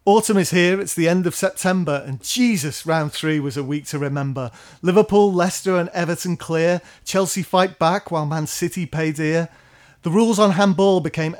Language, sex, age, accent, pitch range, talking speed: English, male, 30-49, British, 160-190 Hz, 185 wpm